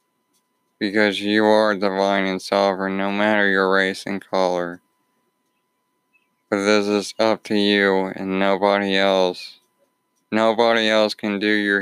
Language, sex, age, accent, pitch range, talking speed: English, male, 20-39, American, 95-105 Hz, 130 wpm